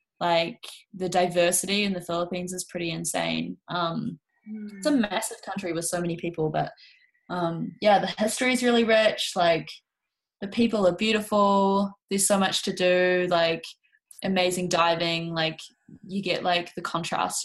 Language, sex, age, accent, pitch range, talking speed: English, female, 10-29, Australian, 170-215 Hz, 155 wpm